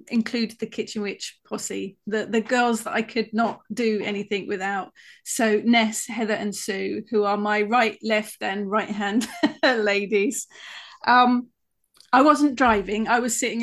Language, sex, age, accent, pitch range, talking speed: English, female, 30-49, British, 210-255 Hz, 160 wpm